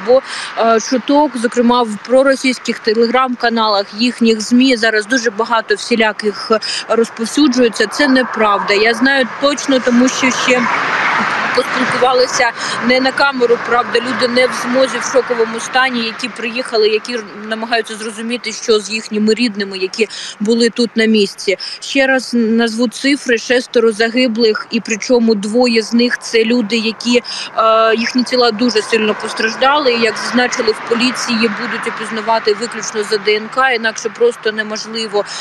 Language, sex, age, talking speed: Ukrainian, female, 20-39, 135 wpm